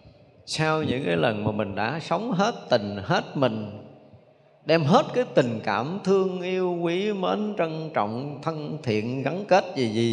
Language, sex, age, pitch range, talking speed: Vietnamese, male, 20-39, 115-170 Hz, 170 wpm